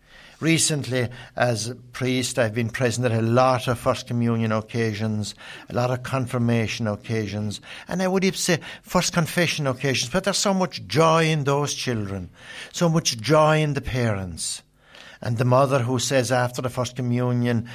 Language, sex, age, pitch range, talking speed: English, male, 60-79, 115-140 Hz, 170 wpm